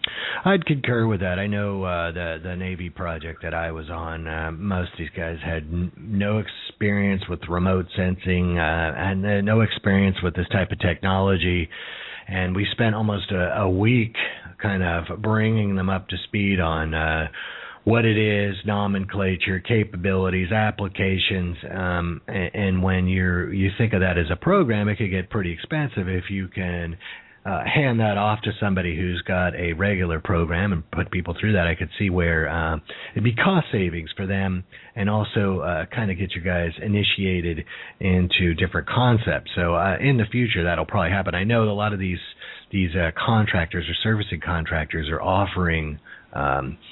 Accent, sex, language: American, male, English